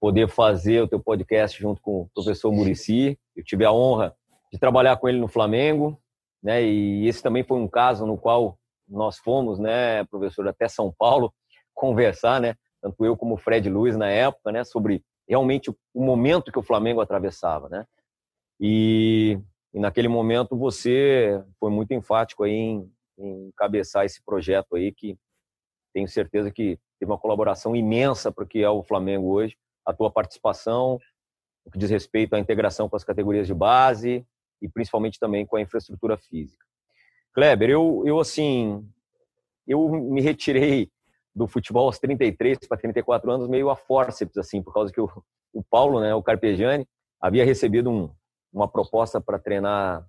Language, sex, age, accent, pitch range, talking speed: Portuguese, male, 30-49, Brazilian, 105-130 Hz, 165 wpm